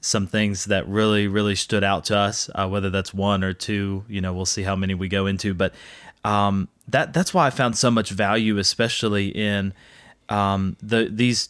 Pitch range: 105-115 Hz